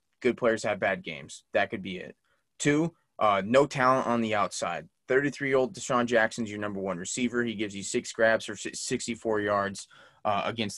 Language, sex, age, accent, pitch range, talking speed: English, male, 20-39, American, 105-125 Hz, 185 wpm